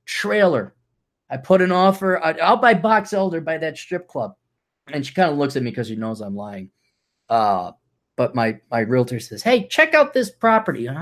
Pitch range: 130-200 Hz